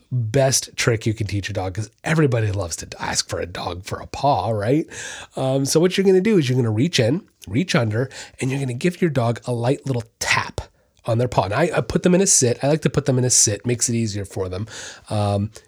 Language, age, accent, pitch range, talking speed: English, 30-49, American, 115-165 Hz, 270 wpm